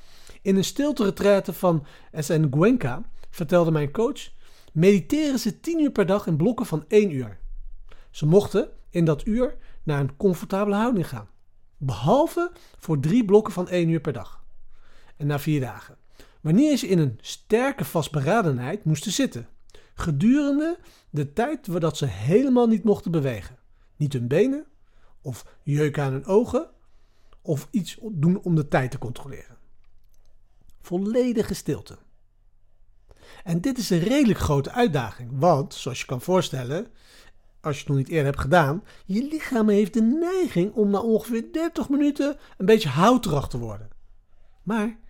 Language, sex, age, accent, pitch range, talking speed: Dutch, male, 40-59, Dutch, 130-220 Hz, 155 wpm